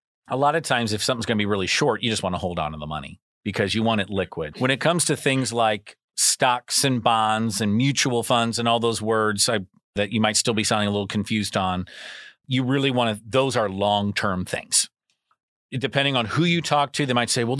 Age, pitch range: 40-59, 100-120 Hz